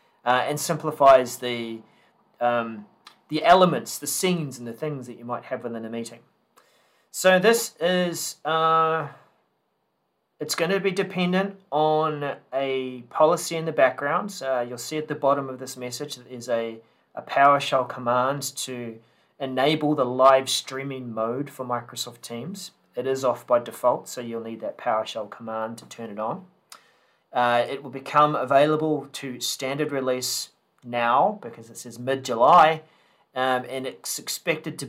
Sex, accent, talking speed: male, Australian, 155 wpm